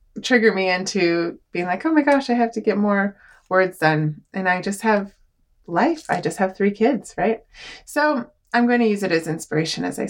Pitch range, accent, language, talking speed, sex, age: 175-235 Hz, American, English, 215 wpm, female, 20-39